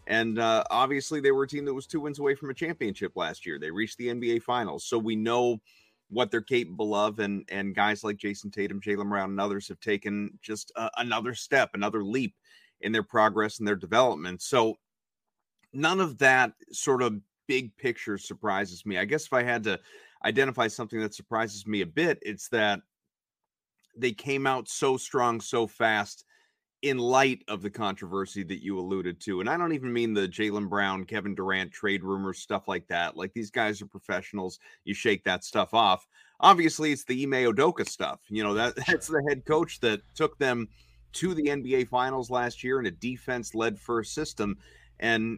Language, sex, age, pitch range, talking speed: English, male, 30-49, 100-130 Hz, 195 wpm